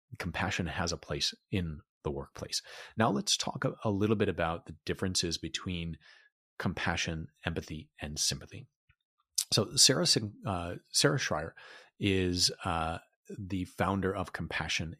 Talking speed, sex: 130 wpm, male